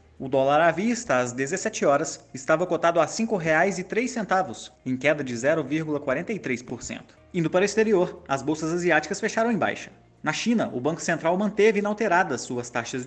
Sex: male